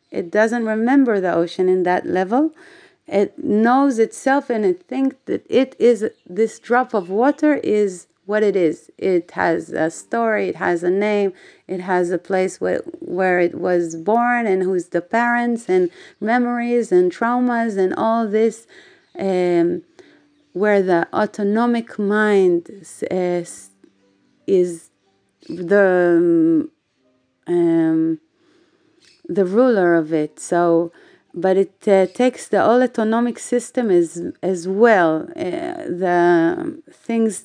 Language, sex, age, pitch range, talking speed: Hebrew, female, 30-49, 180-250 Hz, 135 wpm